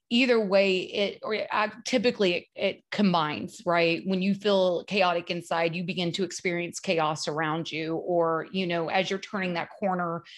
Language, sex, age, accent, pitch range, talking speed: English, female, 30-49, American, 170-205 Hz, 170 wpm